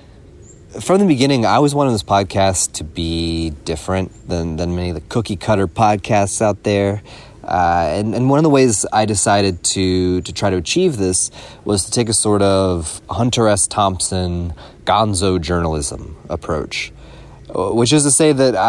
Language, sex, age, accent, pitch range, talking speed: English, male, 30-49, American, 85-110 Hz, 165 wpm